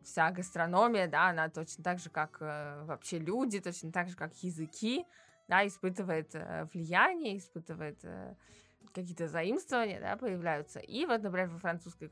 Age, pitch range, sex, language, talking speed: 20-39, 165-210 Hz, female, Russian, 155 wpm